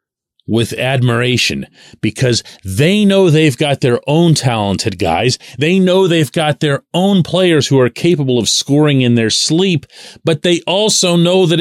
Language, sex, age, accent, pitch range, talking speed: English, male, 40-59, American, 120-170 Hz, 160 wpm